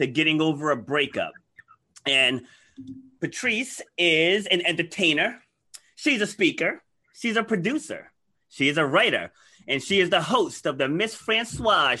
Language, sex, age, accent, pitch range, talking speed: English, male, 30-49, American, 135-200 Hz, 140 wpm